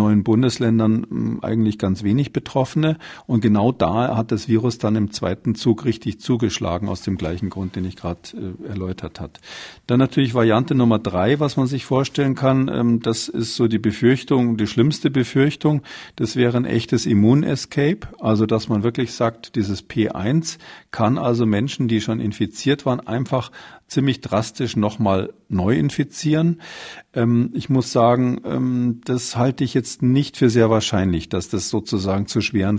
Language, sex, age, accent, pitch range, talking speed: German, male, 40-59, German, 100-125 Hz, 160 wpm